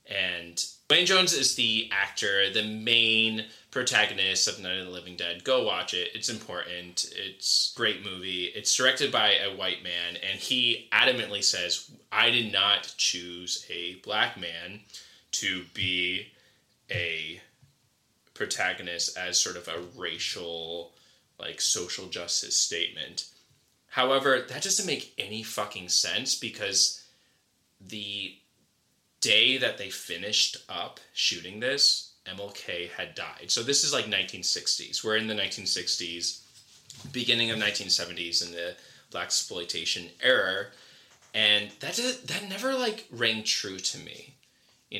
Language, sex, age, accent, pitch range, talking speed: English, male, 20-39, American, 90-115 Hz, 135 wpm